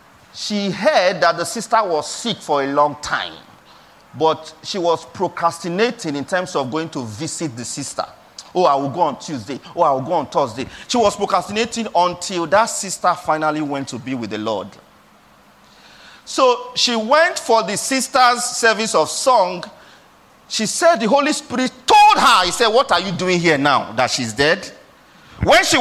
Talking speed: 180 wpm